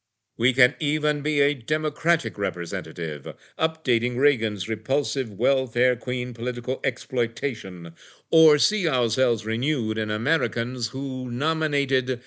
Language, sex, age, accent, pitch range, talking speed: English, male, 60-79, American, 115-140 Hz, 110 wpm